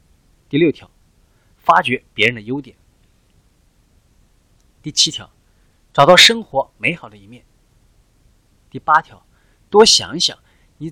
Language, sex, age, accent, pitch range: Chinese, male, 30-49, native, 105-160 Hz